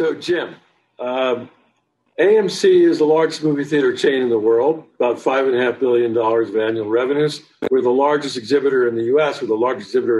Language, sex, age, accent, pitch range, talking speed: English, male, 60-79, American, 130-180 Hz, 175 wpm